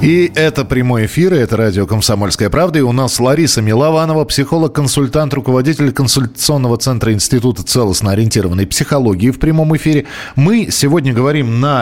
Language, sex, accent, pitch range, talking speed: Russian, male, native, 125-160 Hz, 130 wpm